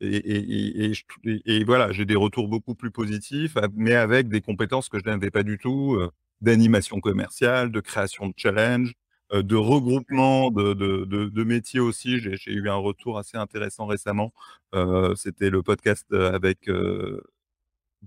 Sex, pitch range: male, 100-120 Hz